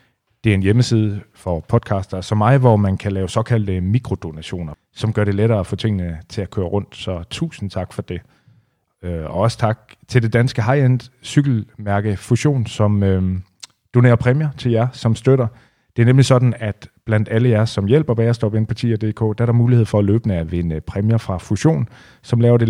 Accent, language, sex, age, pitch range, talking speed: native, Danish, male, 30-49, 100-120 Hz, 200 wpm